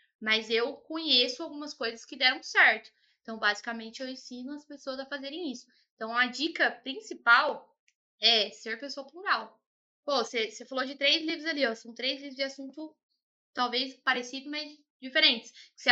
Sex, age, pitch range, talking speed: female, 10-29, 225-280 Hz, 165 wpm